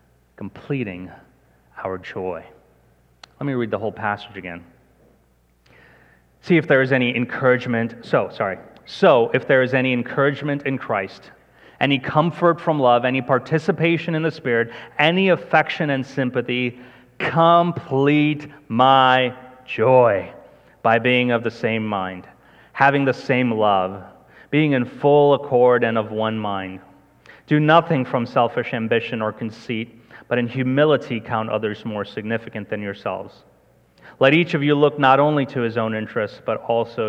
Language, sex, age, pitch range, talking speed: English, male, 30-49, 115-145 Hz, 145 wpm